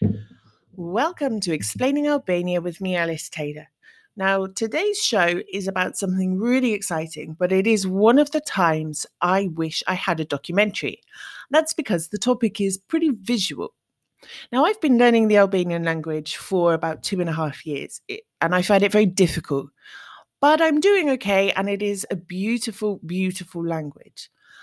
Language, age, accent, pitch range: English, 30-49, British, 170-225 Hz